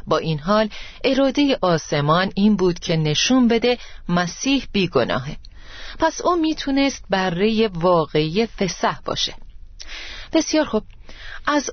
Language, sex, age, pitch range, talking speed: Persian, female, 30-49, 170-240 Hz, 115 wpm